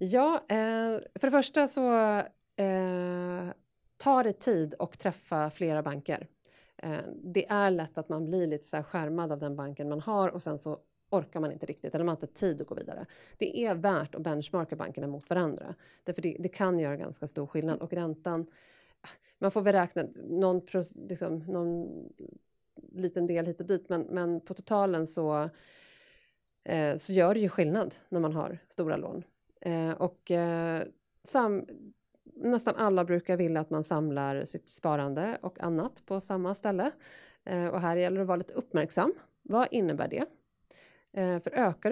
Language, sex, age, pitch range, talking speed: Swedish, female, 30-49, 160-195 Hz, 175 wpm